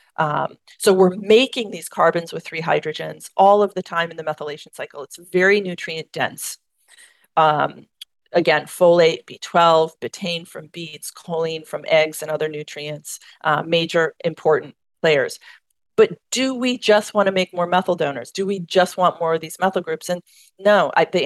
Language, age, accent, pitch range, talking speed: English, 40-59, American, 170-220 Hz, 170 wpm